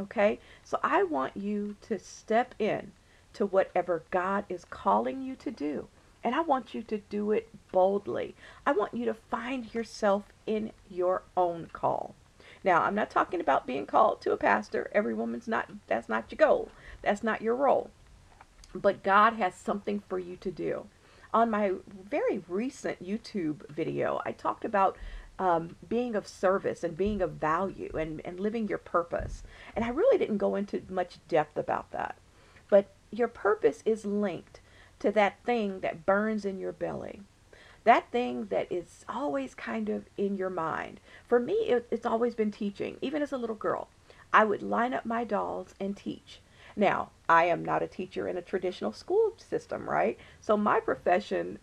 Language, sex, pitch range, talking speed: English, female, 180-225 Hz, 175 wpm